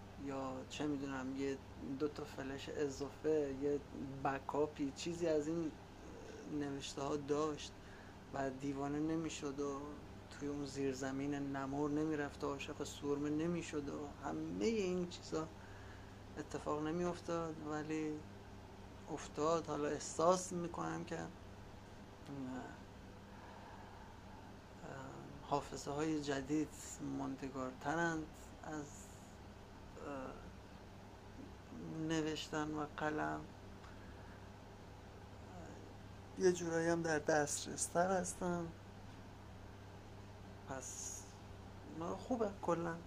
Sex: male